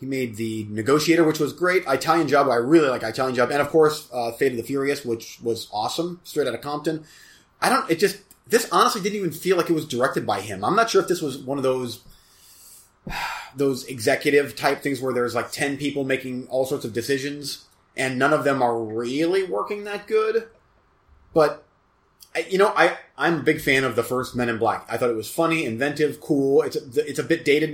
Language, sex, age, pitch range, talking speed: English, male, 30-49, 125-165 Hz, 220 wpm